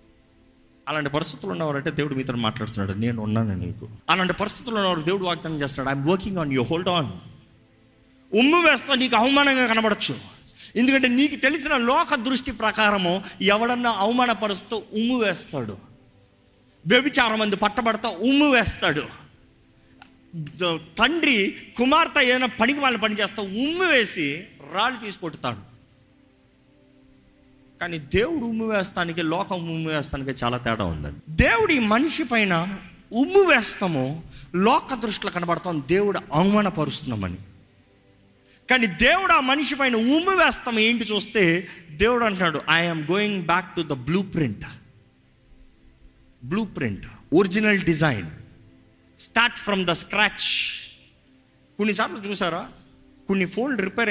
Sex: male